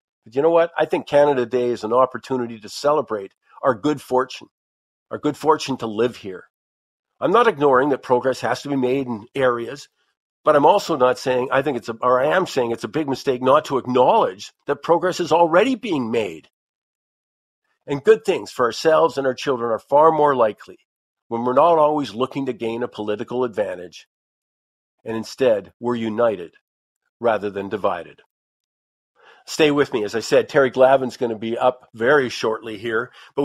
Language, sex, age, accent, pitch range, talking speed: English, male, 50-69, American, 120-145 Hz, 185 wpm